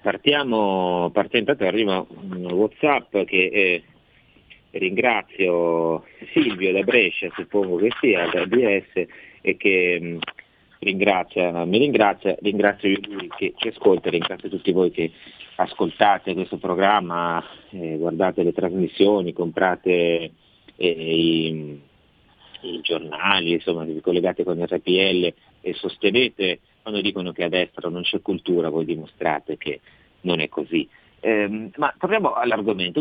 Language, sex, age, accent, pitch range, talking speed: Italian, male, 40-59, native, 85-100 Hz, 125 wpm